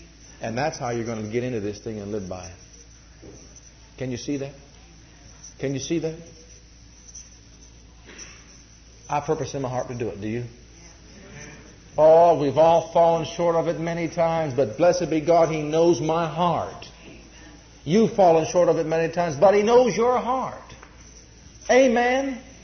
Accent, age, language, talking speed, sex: American, 50-69, English, 165 wpm, male